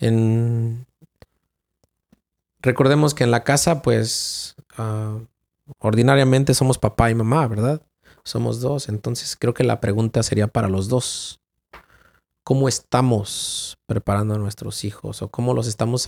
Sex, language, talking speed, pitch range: male, Spanish, 125 wpm, 110-130 Hz